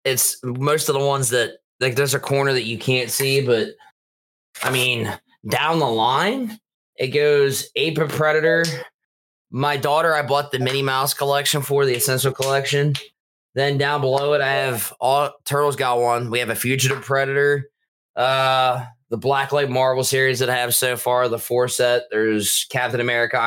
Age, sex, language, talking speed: 20-39, male, English, 175 wpm